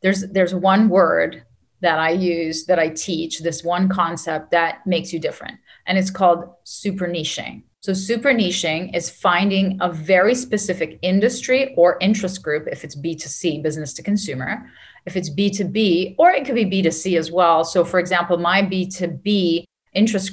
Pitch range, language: 160-190 Hz, English